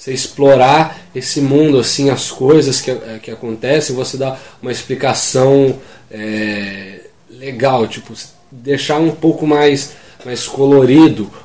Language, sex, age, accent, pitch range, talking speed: English, male, 20-39, Brazilian, 110-145 Hz, 120 wpm